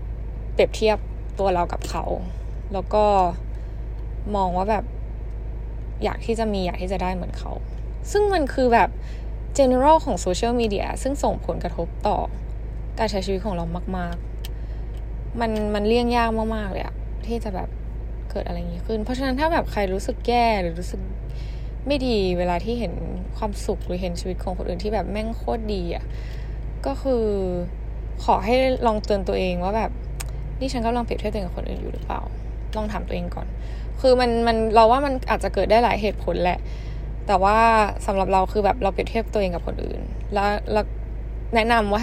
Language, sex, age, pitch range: Thai, female, 10-29, 180-230 Hz